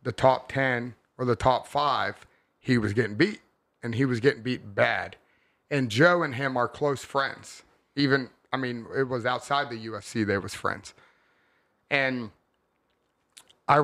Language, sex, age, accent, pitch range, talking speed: English, male, 30-49, American, 115-135 Hz, 160 wpm